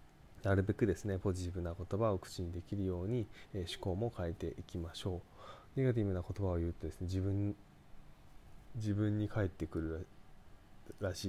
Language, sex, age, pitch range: Japanese, male, 20-39, 85-110 Hz